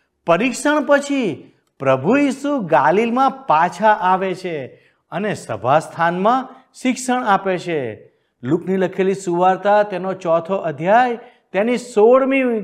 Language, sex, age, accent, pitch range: Gujarati, male, 50-69, native, 165-255 Hz